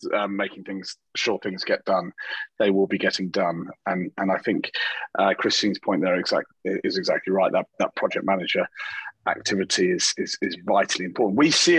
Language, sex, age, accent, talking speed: English, male, 30-49, British, 185 wpm